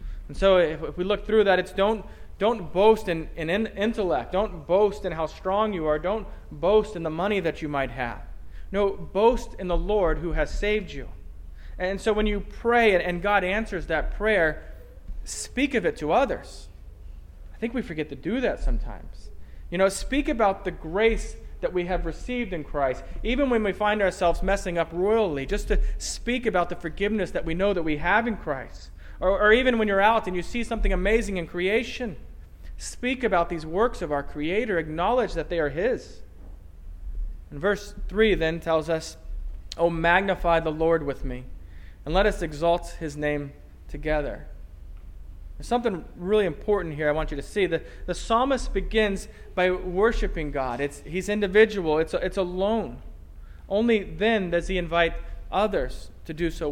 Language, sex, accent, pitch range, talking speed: English, male, American, 145-205 Hz, 185 wpm